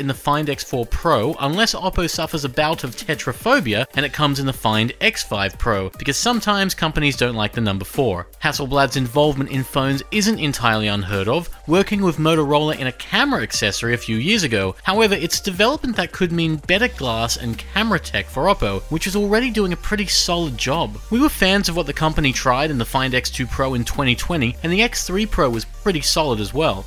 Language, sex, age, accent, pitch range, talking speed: English, male, 30-49, Australian, 125-185 Hz, 205 wpm